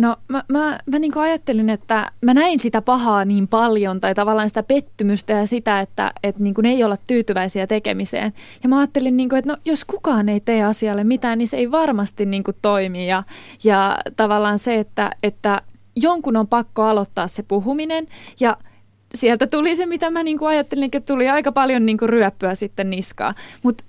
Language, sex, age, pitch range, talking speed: Finnish, female, 20-39, 205-265 Hz, 195 wpm